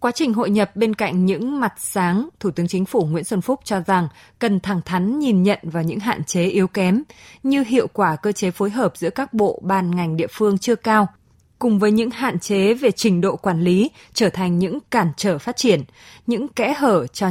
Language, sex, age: Vietnamese, female, 20-39